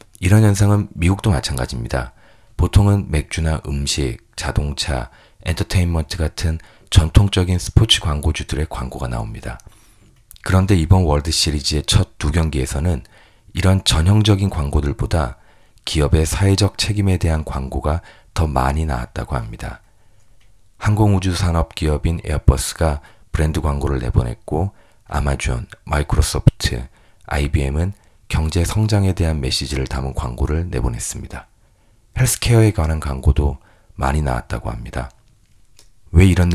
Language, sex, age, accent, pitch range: Korean, male, 40-59, native, 75-100 Hz